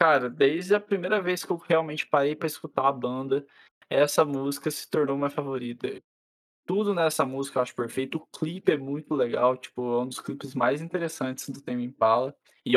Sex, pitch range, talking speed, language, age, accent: male, 135-175 Hz, 195 wpm, Portuguese, 20-39, Brazilian